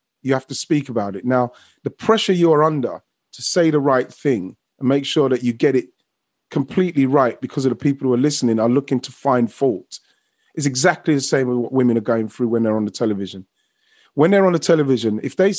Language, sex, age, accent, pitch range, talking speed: English, male, 30-49, British, 120-150 Hz, 225 wpm